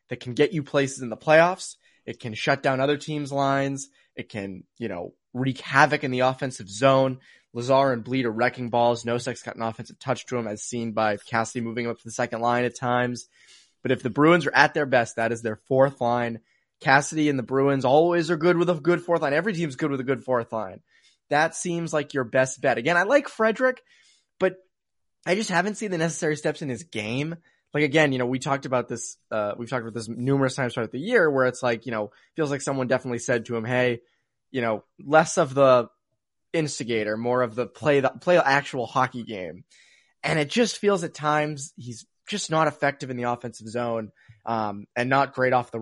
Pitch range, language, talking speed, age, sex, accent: 120-150 Hz, English, 225 wpm, 20-39, male, American